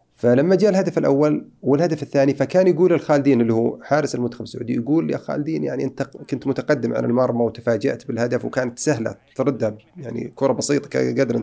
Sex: male